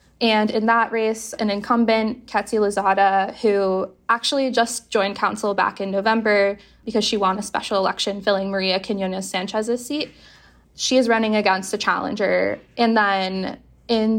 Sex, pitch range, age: female, 195-230 Hz, 10-29